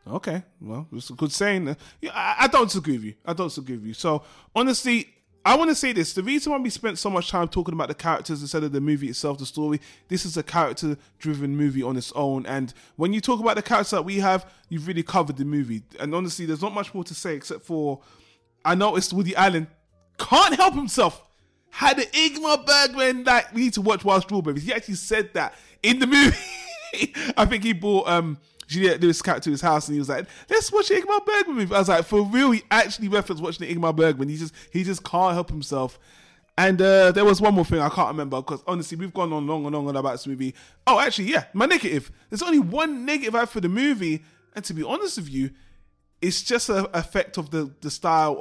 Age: 20-39